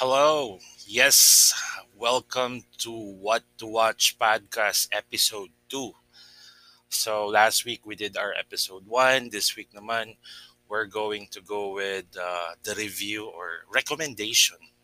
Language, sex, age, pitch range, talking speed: Filipino, male, 20-39, 95-115 Hz, 125 wpm